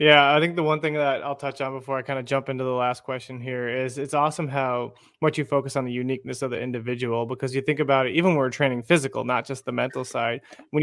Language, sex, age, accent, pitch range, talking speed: English, male, 20-39, American, 130-145 Hz, 270 wpm